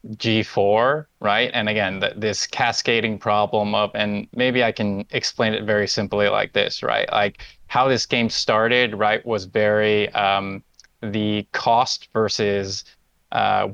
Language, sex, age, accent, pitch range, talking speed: English, male, 20-39, American, 105-120 Hz, 140 wpm